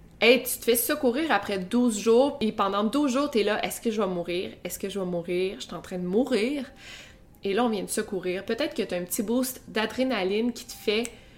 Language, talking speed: French, 250 wpm